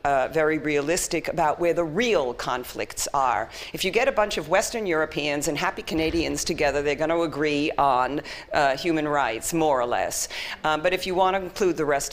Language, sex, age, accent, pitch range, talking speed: German, female, 50-69, American, 140-175 Hz, 205 wpm